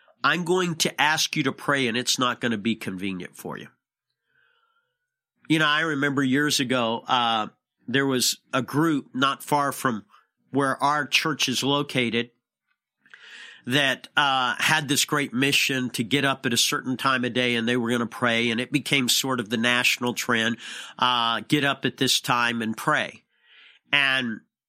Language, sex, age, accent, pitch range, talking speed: English, male, 50-69, American, 125-150 Hz, 175 wpm